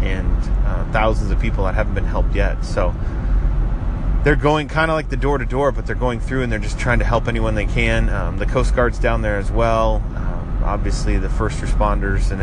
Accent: American